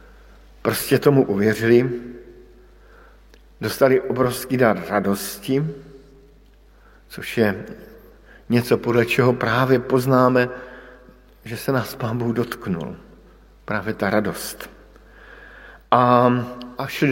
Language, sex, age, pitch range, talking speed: Slovak, male, 50-69, 105-125 Hz, 90 wpm